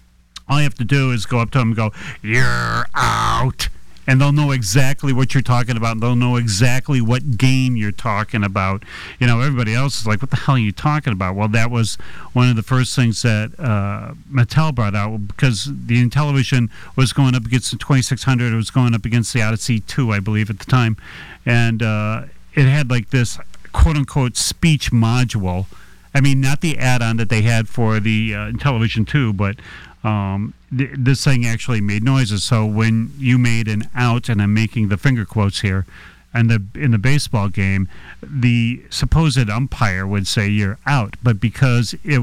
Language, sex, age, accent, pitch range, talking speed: English, male, 40-59, American, 105-130 Hz, 195 wpm